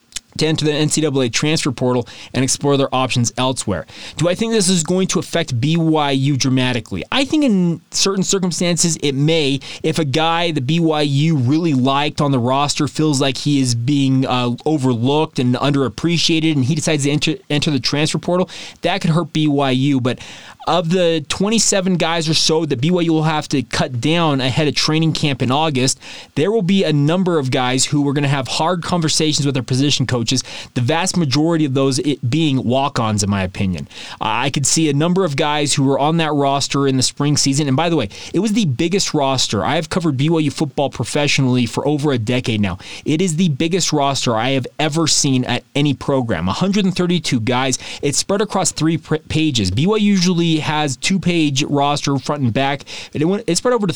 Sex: male